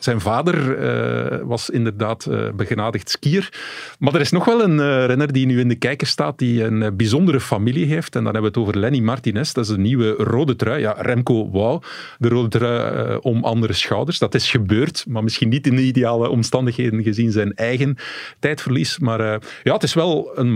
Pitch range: 110-135 Hz